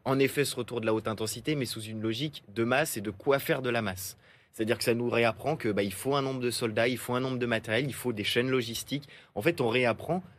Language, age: French, 30-49